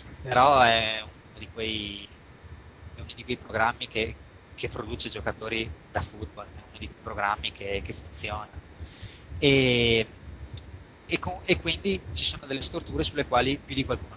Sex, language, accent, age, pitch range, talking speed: male, Italian, native, 20-39, 95-120 Hz, 155 wpm